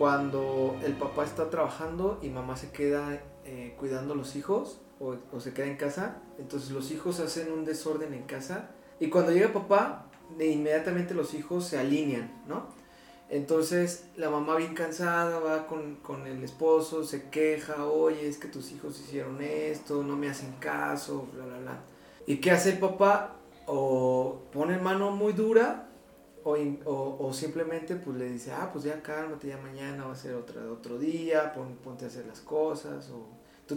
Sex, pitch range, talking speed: male, 140-170 Hz, 180 wpm